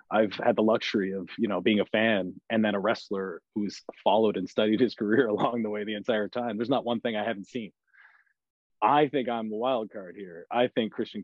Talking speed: 230 wpm